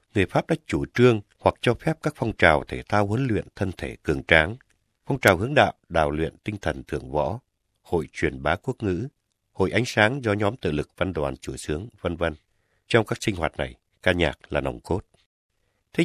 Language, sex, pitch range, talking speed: Vietnamese, male, 85-115 Hz, 215 wpm